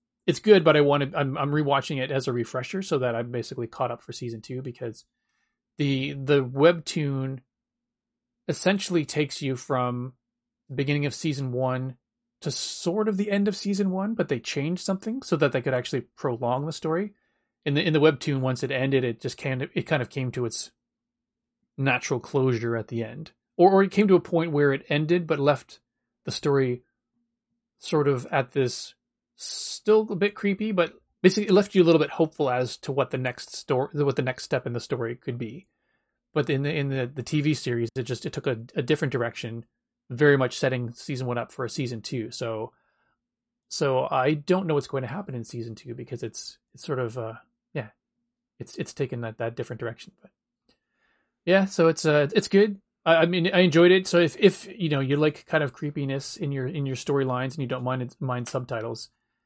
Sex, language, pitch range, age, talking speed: male, English, 125-175 Hz, 30-49, 210 wpm